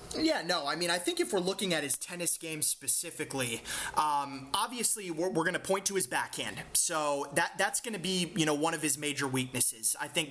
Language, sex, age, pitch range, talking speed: English, male, 30-49, 155-205 Hz, 225 wpm